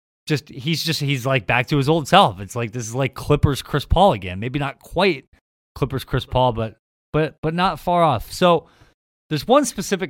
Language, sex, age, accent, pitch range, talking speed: English, male, 30-49, American, 115-160 Hz, 210 wpm